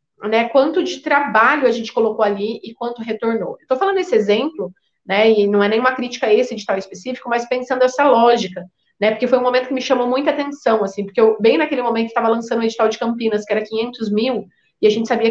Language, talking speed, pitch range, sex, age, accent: Portuguese, 240 wpm, 215-260 Hz, female, 30-49, Brazilian